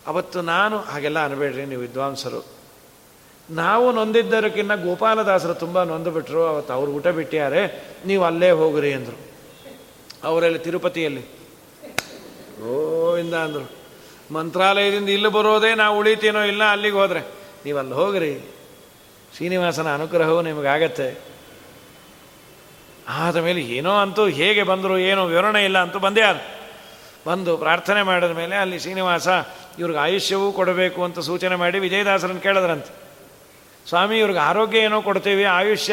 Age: 40-59